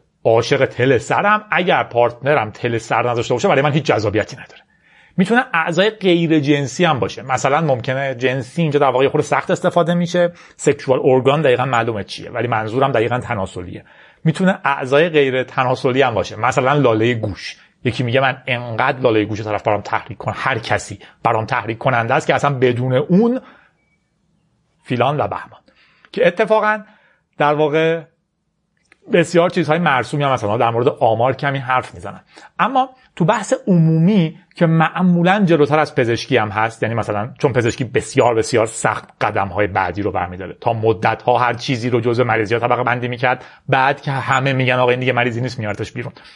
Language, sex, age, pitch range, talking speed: Persian, male, 40-59, 120-180 Hz, 170 wpm